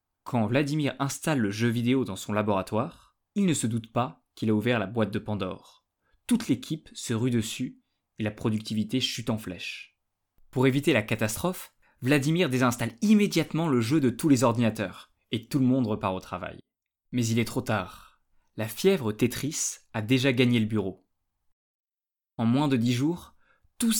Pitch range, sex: 110-135 Hz, male